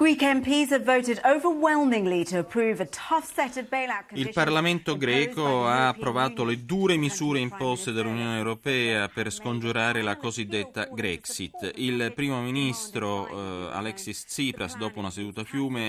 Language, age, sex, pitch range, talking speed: Italian, 30-49, male, 100-125 Hz, 100 wpm